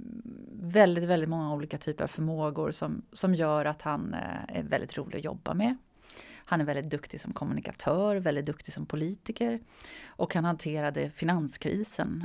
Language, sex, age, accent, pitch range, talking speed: Swedish, female, 30-49, native, 155-215 Hz, 155 wpm